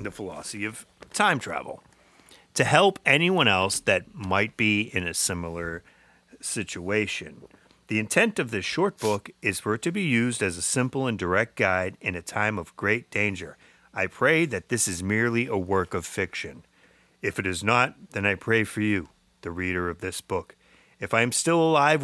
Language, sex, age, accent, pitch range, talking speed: English, male, 30-49, American, 90-120 Hz, 190 wpm